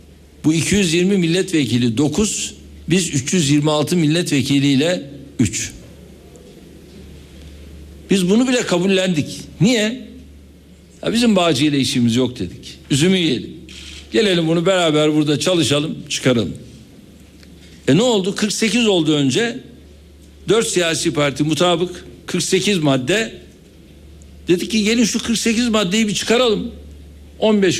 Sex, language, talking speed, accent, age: male, Turkish, 105 wpm, native, 60-79